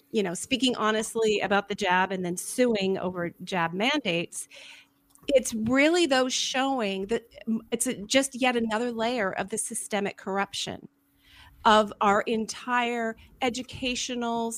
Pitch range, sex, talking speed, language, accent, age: 210-255 Hz, female, 130 wpm, English, American, 40-59